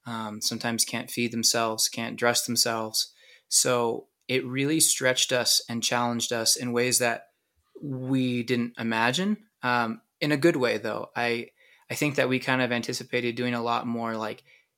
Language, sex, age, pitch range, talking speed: English, male, 20-39, 115-130 Hz, 165 wpm